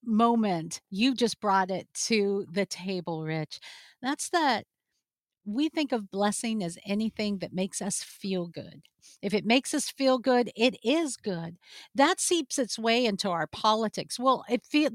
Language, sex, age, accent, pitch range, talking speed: English, female, 50-69, American, 195-265 Hz, 165 wpm